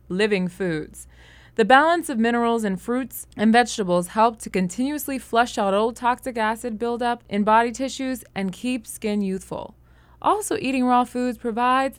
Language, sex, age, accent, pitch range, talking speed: English, female, 20-39, American, 175-245 Hz, 155 wpm